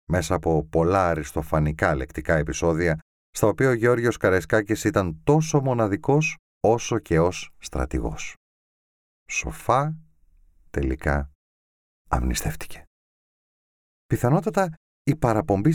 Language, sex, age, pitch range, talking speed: Greek, male, 30-49, 75-120 Hz, 90 wpm